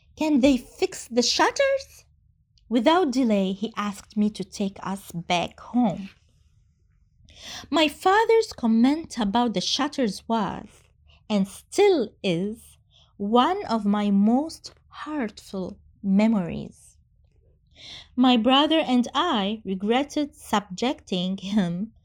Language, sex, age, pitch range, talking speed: Arabic, female, 20-39, 210-300 Hz, 105 wpm